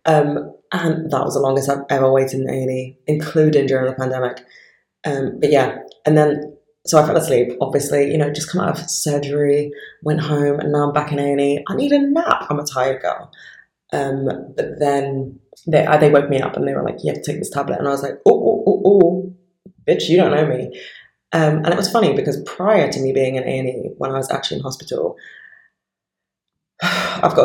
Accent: British